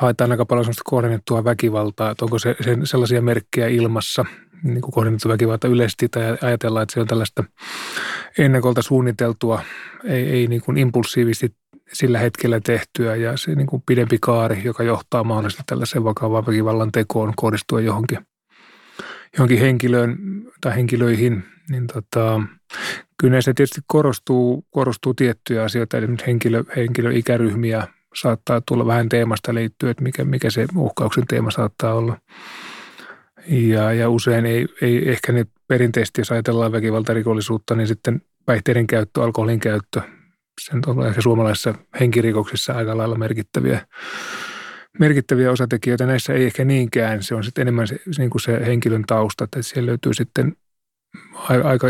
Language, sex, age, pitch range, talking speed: Finnish, male, 30-49, 115-125 Hz, 140 wpm